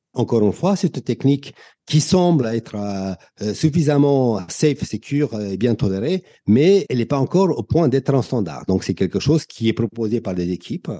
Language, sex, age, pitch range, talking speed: French, male, 50-69, 115-160 Hz, 190 wpm